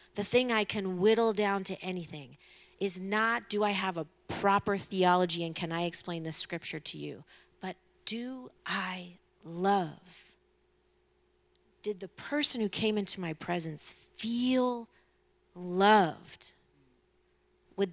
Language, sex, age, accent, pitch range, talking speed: English, female, 40-59, American, 175-220 Hz, 130 wpm